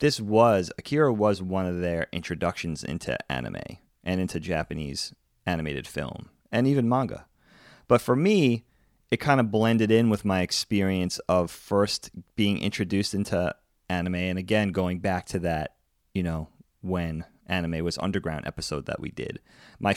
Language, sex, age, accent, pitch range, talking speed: English, male, 30-49, American, 90-110 Hz, 155 wpm